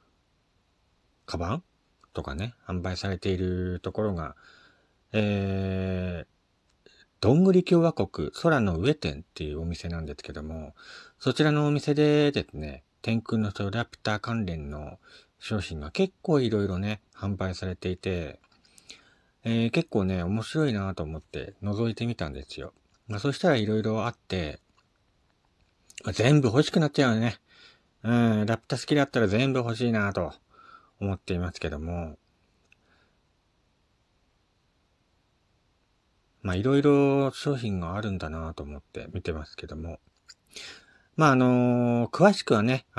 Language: Japanese